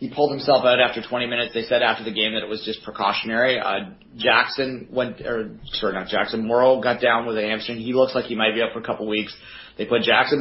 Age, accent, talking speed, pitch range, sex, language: 30-49, American, 255 wpm, 105-125 Hz, male, English